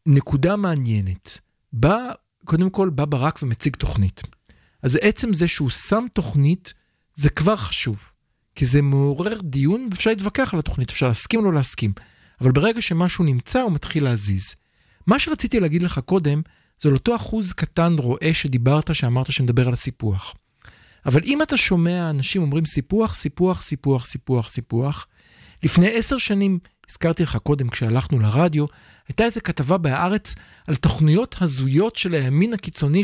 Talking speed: 150 wpm